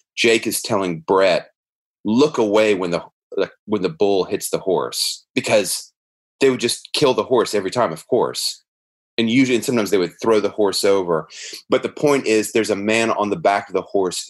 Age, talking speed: 30-49, 205 wpm